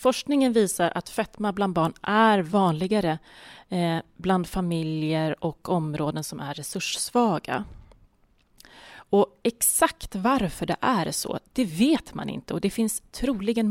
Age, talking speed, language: 30-49, 125 wpm, English